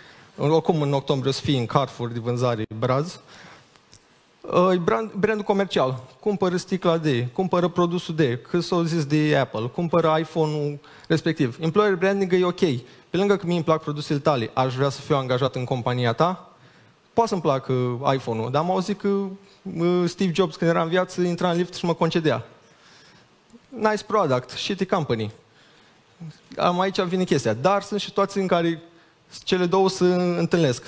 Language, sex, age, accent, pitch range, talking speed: Romanian, male, 20-39, native, 145-190 Hz, 160 wpm